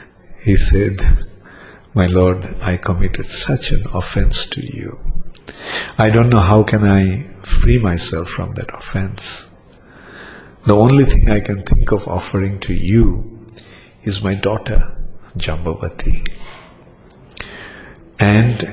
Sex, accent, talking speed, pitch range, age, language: male, Indian, 120 wpm, 90-110 Hz, 50-69, English